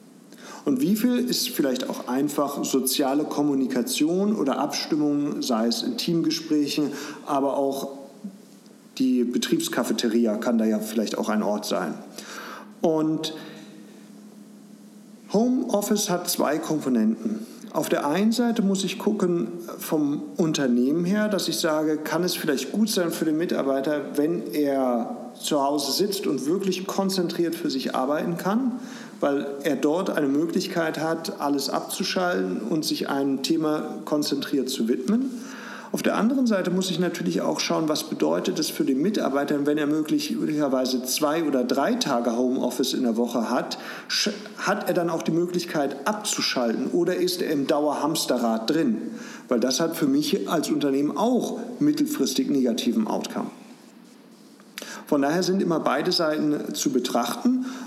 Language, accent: German, German